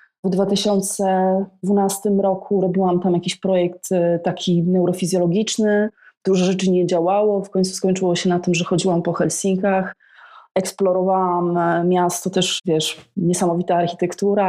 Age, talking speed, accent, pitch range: 20-39, 120 wpm, native, 180-195 Hz